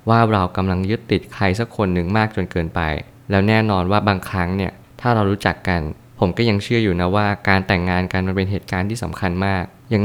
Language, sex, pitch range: Thai, male, 95-110 Hz